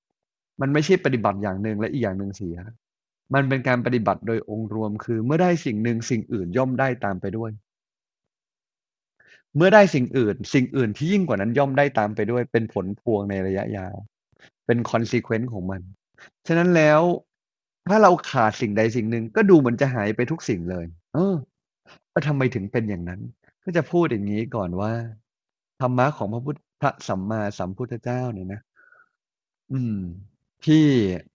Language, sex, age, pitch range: Thai, male, 30-49, 105-135 Hz